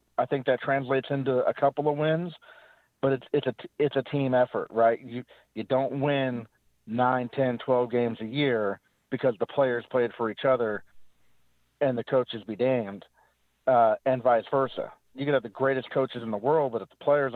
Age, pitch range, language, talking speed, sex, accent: 40-59, 110-135 Hz, English, 195 wpm, male, American